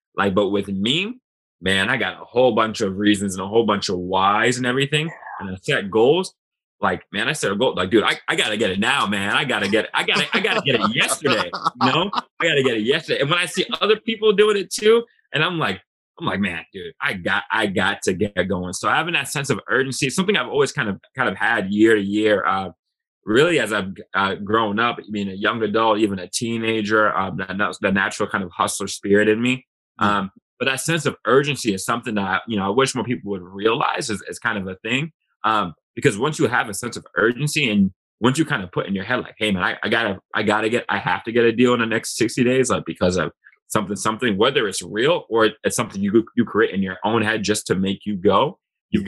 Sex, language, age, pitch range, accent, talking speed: male, English, 20-39, 100-130 Hz, American, 260 wpm